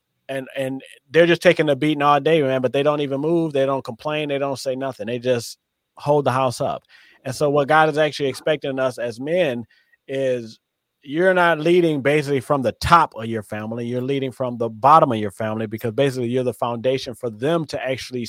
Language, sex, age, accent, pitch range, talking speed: English, male, 30-49, American, 130-170 Hz, 215 wpm